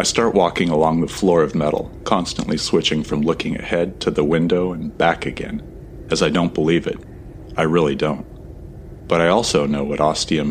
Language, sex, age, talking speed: English, male, 40-59, 190 wpm